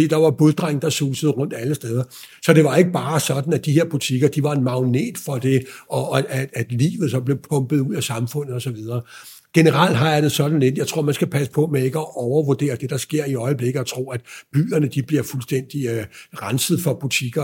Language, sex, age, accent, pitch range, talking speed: Danish, male, 60-79, native, 135-165 Hz, 235 wpm